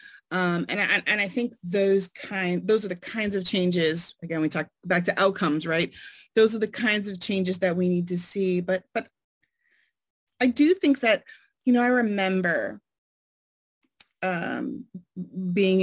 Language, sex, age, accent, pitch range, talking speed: English, female, 30-49, American, 175-225 Hz, 165 wpm